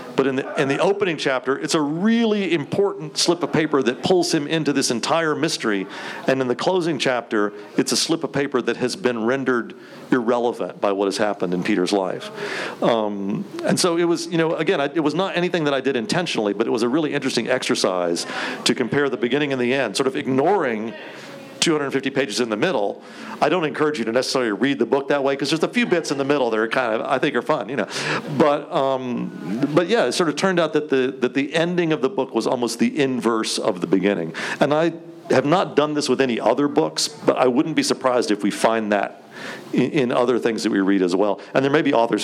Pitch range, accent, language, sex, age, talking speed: 115-155 Hz, American, English, male, 50-69, 235 wpm